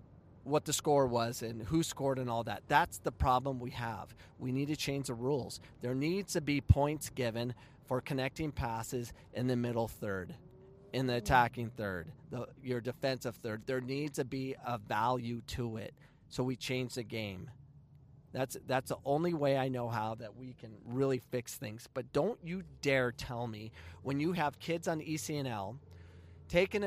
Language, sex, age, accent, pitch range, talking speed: English, male, 40-59, American, 120-150 Hz, 180 wpm